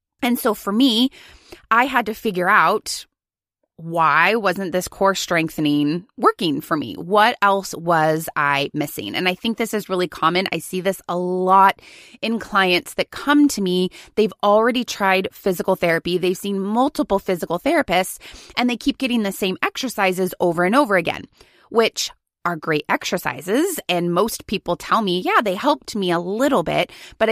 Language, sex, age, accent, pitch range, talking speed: English, female, 20-39, American, 180-225 Hz, 170 wpm